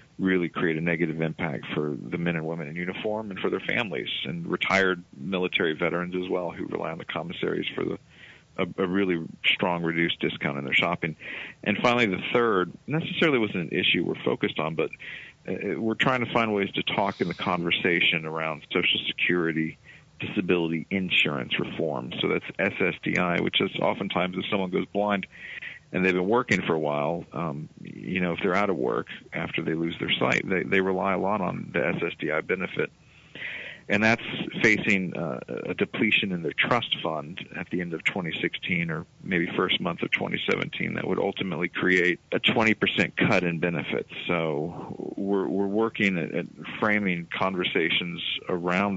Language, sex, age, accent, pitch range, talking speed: English, male, 50-69, American, 85-100 Hz, 180 wpm